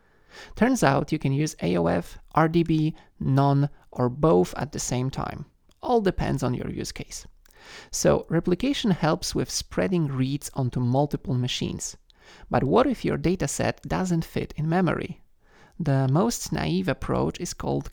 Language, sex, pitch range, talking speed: English, male, 130-175 Hz, 145 wpm